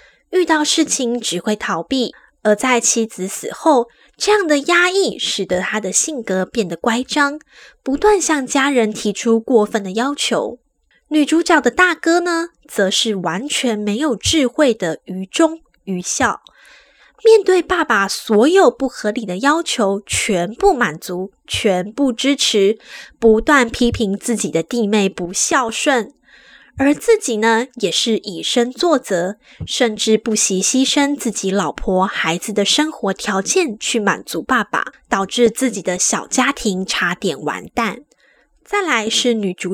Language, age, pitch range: Chinese, 10-29, 210-295 Hz